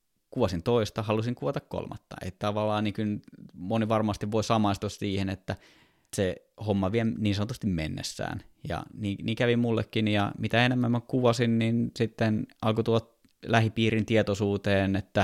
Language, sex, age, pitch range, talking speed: Finnish, male, 20-39, 90-110 Hz, 150 wpm